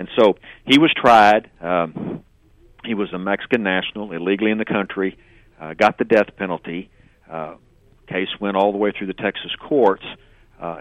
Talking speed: 170 wpm